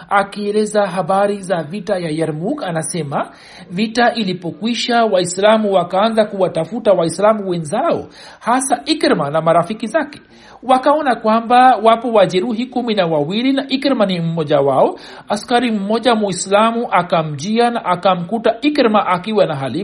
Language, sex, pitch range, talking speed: Swahili, male, 190-240 Hz, 120 wpm